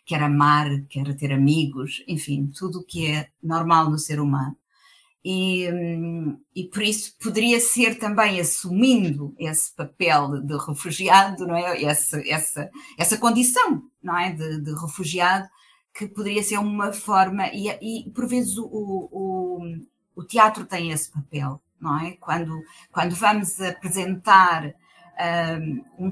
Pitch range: 155-205 Hz